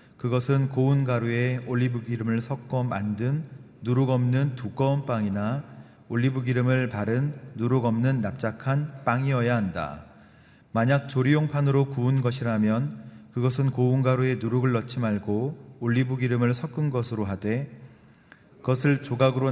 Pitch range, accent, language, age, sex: 115-135 Hz, native, Korean, 30-49, male